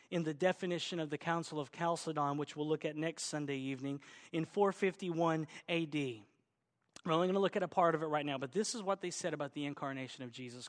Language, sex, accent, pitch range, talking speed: English, male, American, 160-245 Hz, 230 wpm